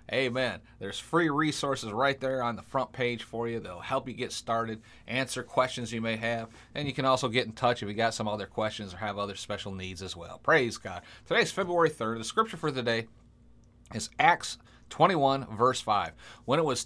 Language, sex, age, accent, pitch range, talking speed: English, male, 30-49, American, 115-155 Hz, 210 wpm